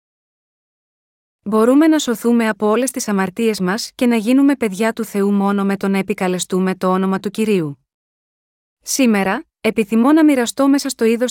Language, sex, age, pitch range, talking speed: Greek, female, 30-49, 200-245 Hz, 160 wpm